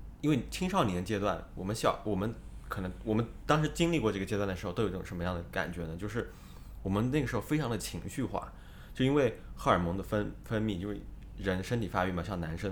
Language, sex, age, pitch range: Chinese, male, 20-39, 90-120 Hz